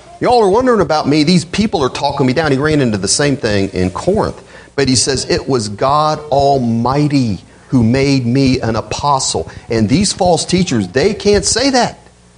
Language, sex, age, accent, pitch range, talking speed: English, male, 40-59, American, 100-145 Hz, 190 wpm